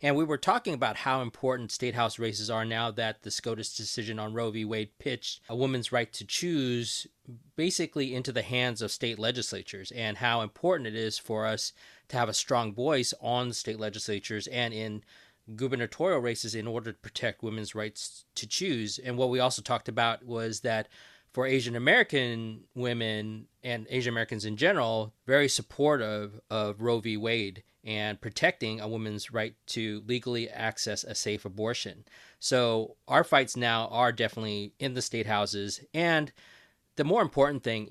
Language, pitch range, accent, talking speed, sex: English, 110-125 Hz, American, 175 wpm, male